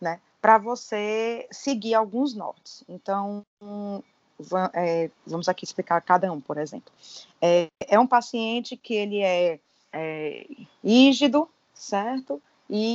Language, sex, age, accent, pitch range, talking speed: Portuguese, female, 20-39, Brazilian, 190-255 Hz, 115 wpm